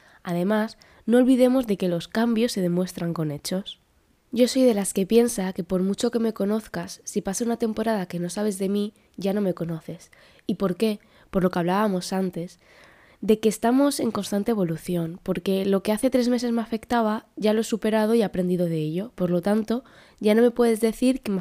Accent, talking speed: Spanish, 215 wpm